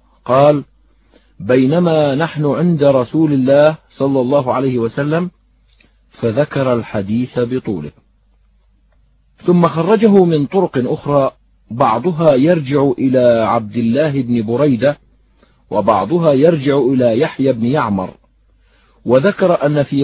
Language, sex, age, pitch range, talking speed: Arabic, male, 50-69, 120-150 Hz, 100 wpm